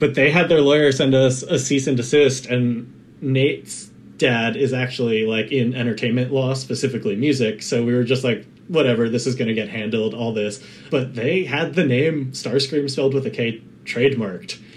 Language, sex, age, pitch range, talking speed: English, male, 20-39, 115-135 Hz, 190 wpm